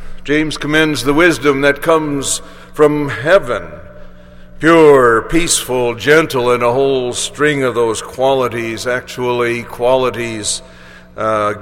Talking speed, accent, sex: 110 wpm, American, male